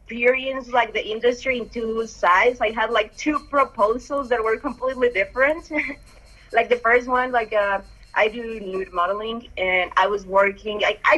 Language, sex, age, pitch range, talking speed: English, female, 20-39, 195-245 Hz, 170 wpm